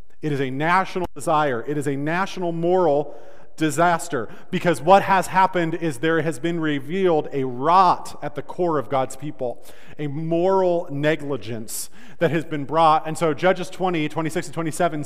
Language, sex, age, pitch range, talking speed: English, male, 40-59, 120-160 Hz, 165 wpm